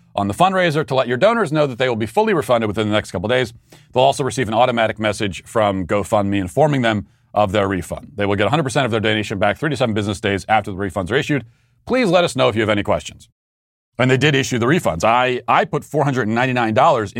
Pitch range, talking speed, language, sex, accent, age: 110-145 Hz, 245 wpm, English, male, American, 40-59